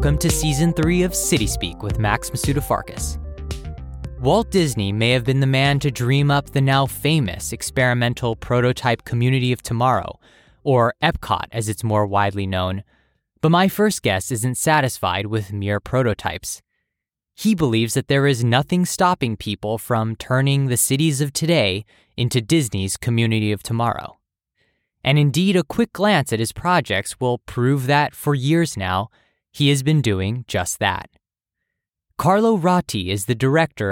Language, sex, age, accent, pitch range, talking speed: English, male, 20-39, American, 110-145 Hz, 155 wpm